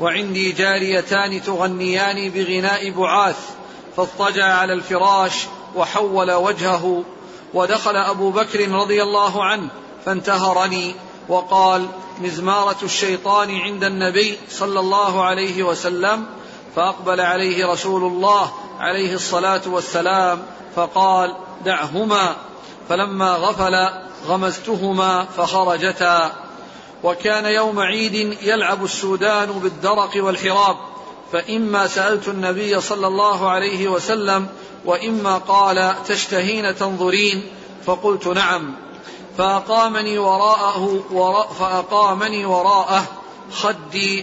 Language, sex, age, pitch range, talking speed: Arabic, male, 40-59, 185-200 Hz, 90 wpm